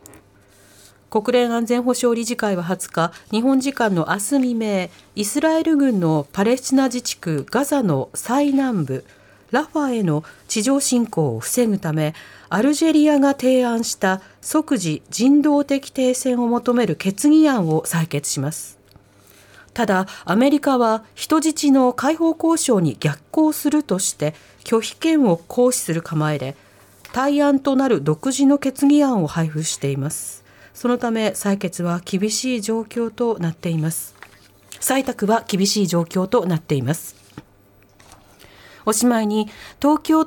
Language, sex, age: Japanese, female, 40-59